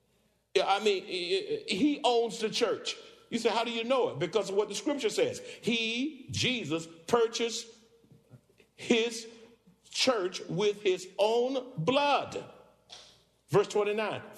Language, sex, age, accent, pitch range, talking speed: English, male, 50-69, American, 195-235 Hz, 125 wpm